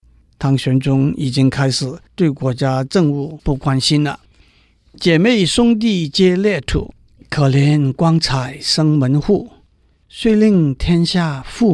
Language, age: Chinese, 50-69